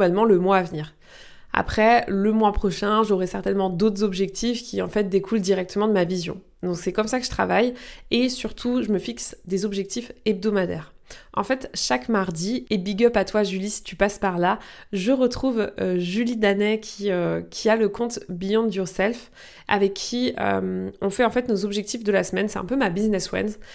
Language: French